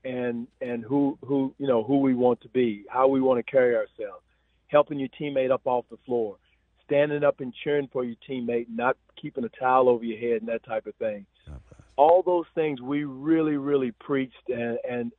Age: 50-69